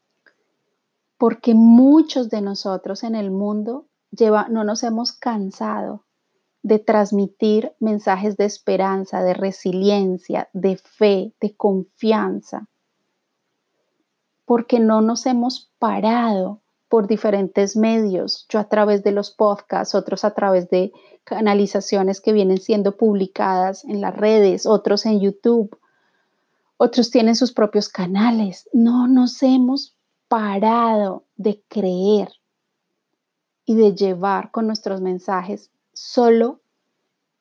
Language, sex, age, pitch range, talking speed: Spanish, female, 30-49, 195-230 Hz, 110 wpm